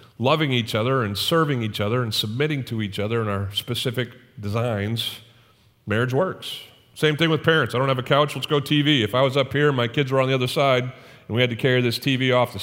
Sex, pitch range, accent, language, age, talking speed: male, 105-140 Hz, American, English, 40-59, 245 wpm